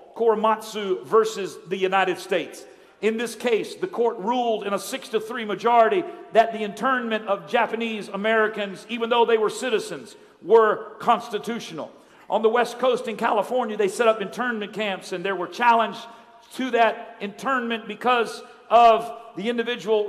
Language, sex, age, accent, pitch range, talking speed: English, male, 50-69, American, 215-255 Hz, 155 wpm